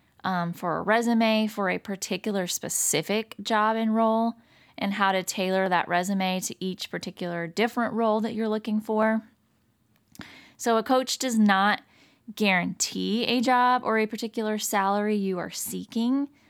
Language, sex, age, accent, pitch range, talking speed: English, female, 20-39, American, 190-230 Hz, 150 wpm